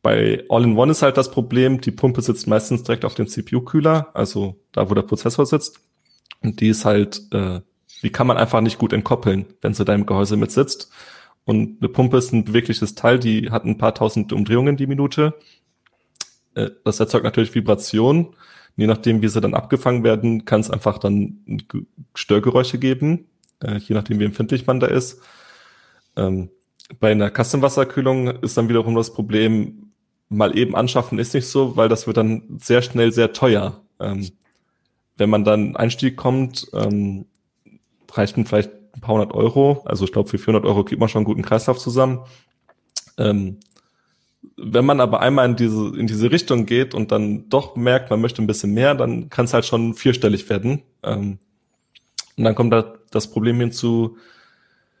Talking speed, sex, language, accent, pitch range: 180 wpm, male, German, German, 105-130 Hz